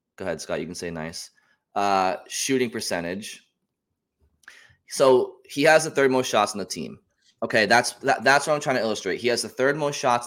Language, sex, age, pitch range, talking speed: English, male, 20-39, 105-130 Hz, 205 wpm